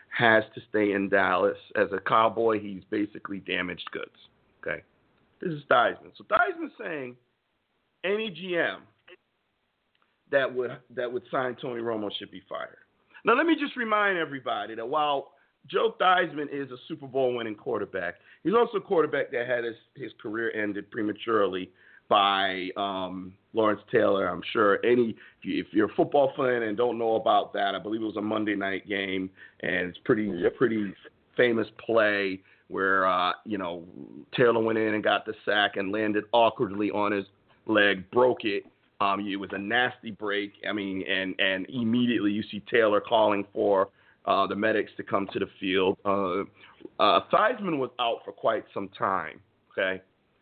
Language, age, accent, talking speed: English, 50-69, American, 170 wpm